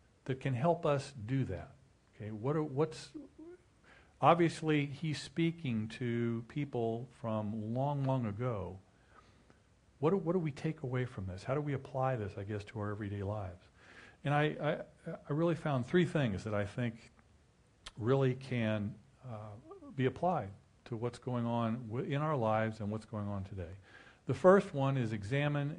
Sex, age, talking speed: male, 50-69, 170 wpm